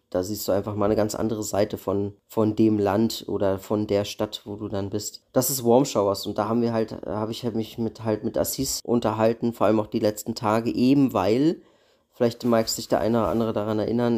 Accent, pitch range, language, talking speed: German, 105-120 Hz, German, 235 wpm